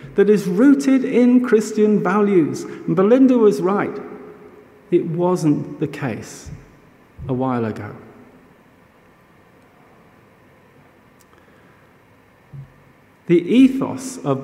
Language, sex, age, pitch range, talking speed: English, male, 50-69, 135-205 Hz, 85 wpm